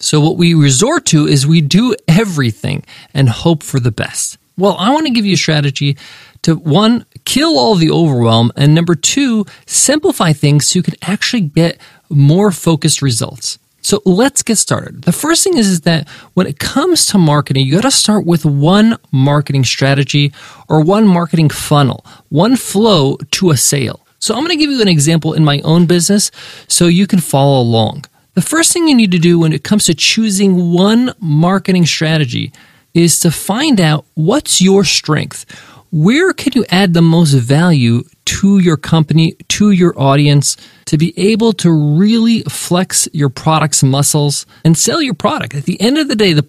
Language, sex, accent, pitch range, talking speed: English, male, American, 145-200 Hz, 185 wpm